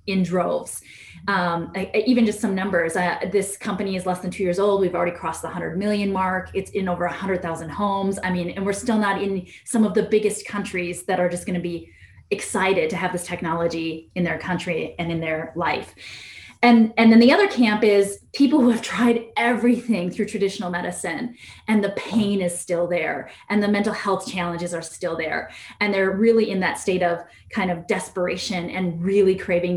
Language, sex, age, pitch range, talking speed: English, female, 20-39, 175-220 Hz, 200 wpm